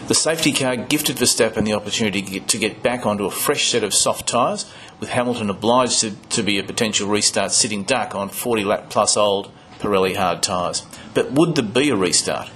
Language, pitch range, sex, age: English, 100-125 Hz, male, 40-59